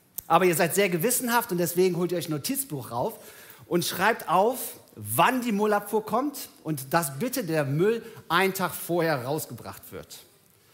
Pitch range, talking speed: 135-200 Hz, 170 wpm